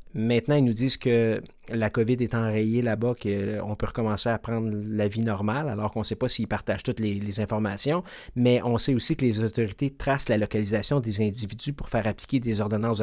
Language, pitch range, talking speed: French, 110-135 Hz, 210 wpm